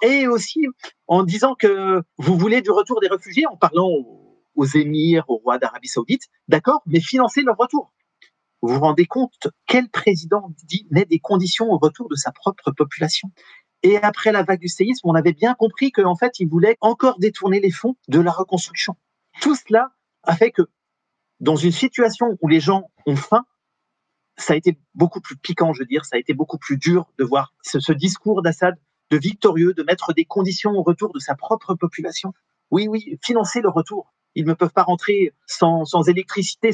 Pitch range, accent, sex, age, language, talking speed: 165-220 Hz, French, male, 40-59, French, 195 wpm